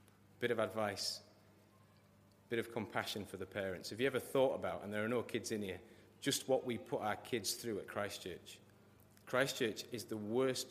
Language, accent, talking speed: English, British, 195 wpm